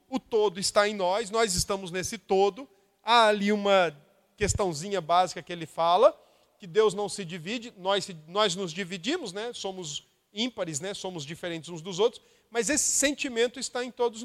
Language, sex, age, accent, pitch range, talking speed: Portuguese, male, 40-59, Brazilian, 190-240 Hz, 175 wpm